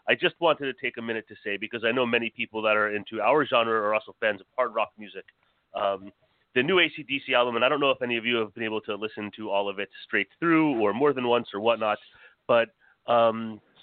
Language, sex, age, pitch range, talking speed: English, male, 30-49, 105-140 Hz, 250 wpm